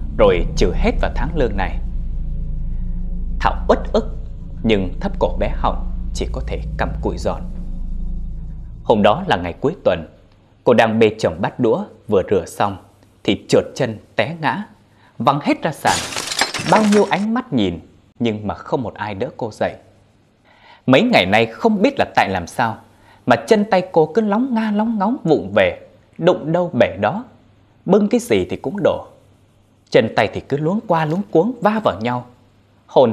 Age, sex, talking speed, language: 20-39, male, 180 wpm, Vietnamese